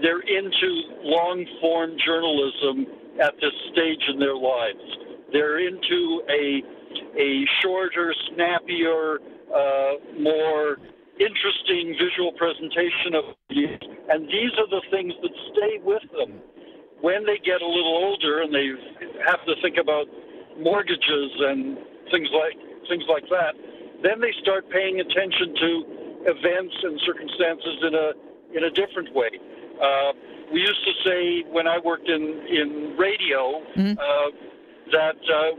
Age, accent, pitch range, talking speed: 60-79, American, 160-190 Hz, 135 wpm